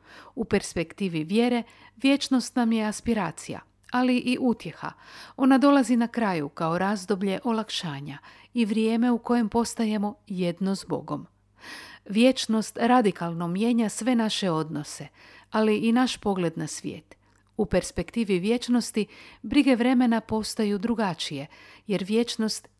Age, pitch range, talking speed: 50-69, 175-240 Hz, 120 wpm